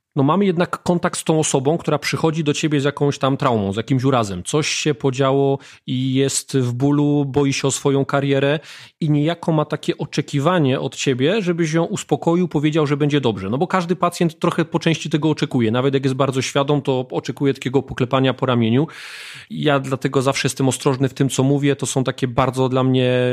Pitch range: 130-150 Hz